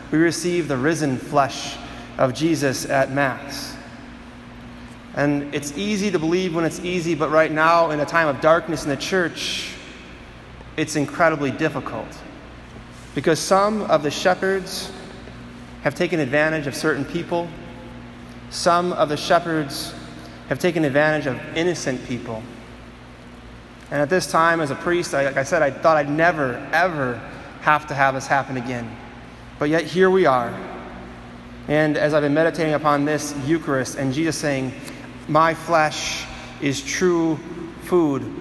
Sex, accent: male, American